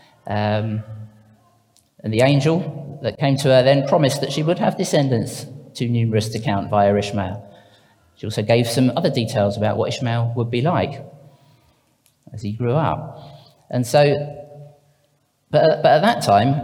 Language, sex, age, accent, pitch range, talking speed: English, male, 40-59, British, 115-145 Hz, 160 wpm